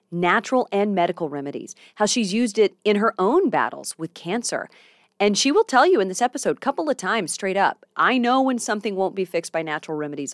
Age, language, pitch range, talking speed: 30-49, English, 170-230 Hz, 220 wpm